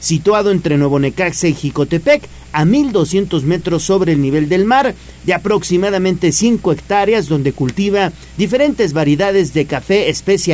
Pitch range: 150-195 Hz